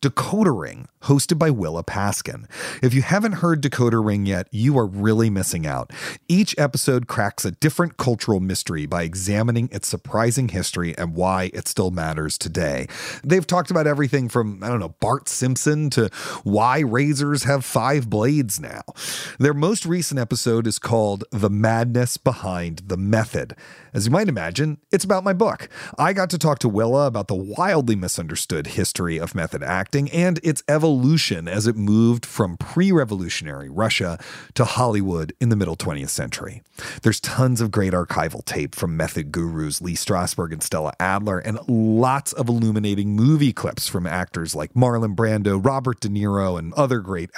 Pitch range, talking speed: 95-140 Hz, 170 wpm